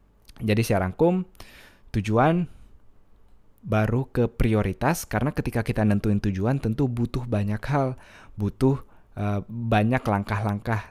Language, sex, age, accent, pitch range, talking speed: Indonesian, male, 20-39, native, 100-120 Hz, 110 wpm